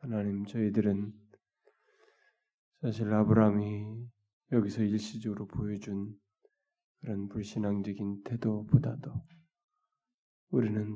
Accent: native